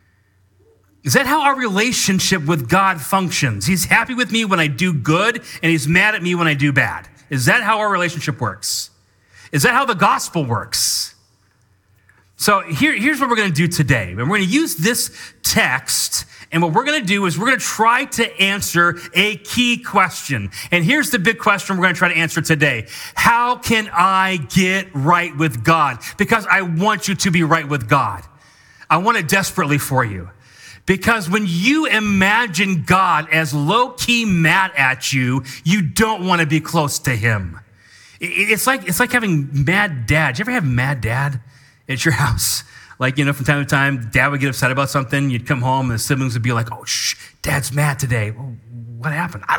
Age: 30-49